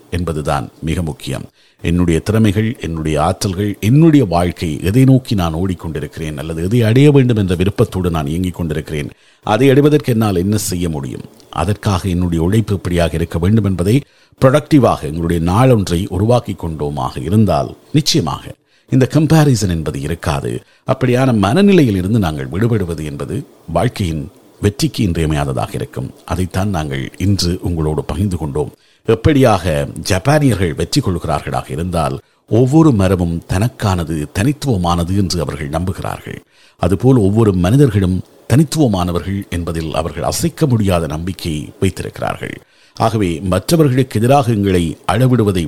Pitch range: 85-125 Hz